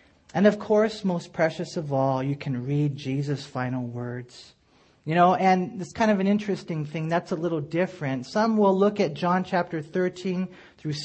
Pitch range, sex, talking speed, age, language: 145-195 Hz, male, 185 wpm, 40-59, English